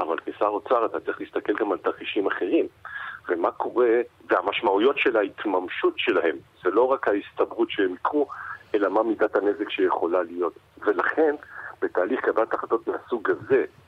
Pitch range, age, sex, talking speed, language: 345-420 Hz, 50-69, male, 145 wpm, Hebrew